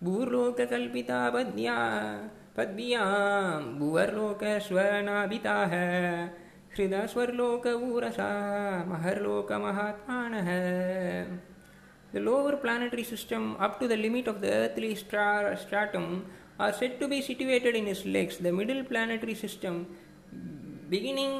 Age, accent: 20-39, native